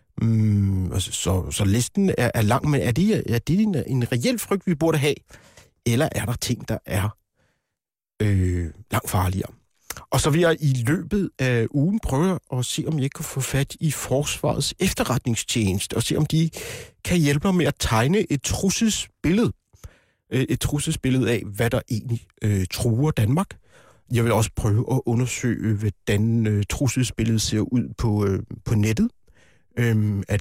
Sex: male